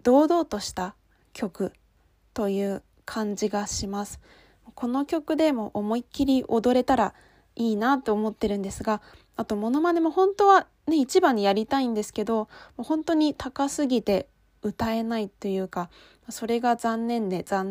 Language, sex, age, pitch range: Japanese, female, 20-39, 225-305 Hz